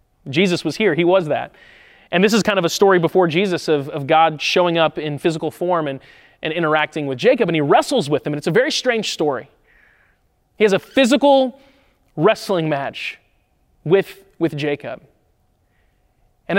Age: 30-49